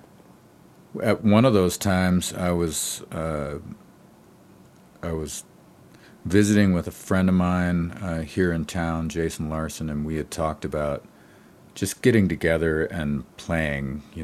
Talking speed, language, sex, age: 140 wpm, English, male, 50-69